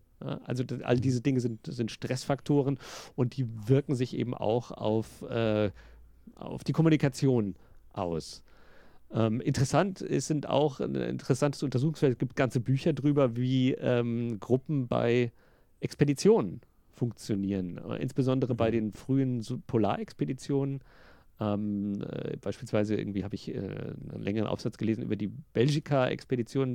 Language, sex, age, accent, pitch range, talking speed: German, male, 40-59, German, 110-135 Hz, 125 wpm